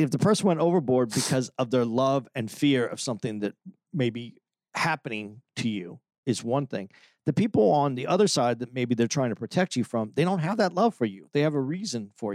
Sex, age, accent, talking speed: male, 40-59, American, 235 wpm